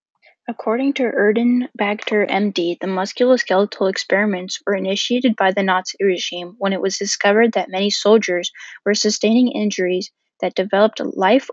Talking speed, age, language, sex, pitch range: 135 wpm, 10-29, English, female, 190-215 Hz